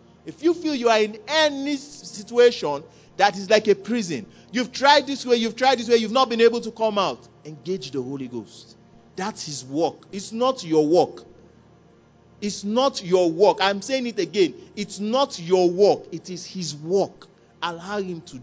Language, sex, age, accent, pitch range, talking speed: English, male, 40-59, Nigerian, 170-230 Hz, 190 wpm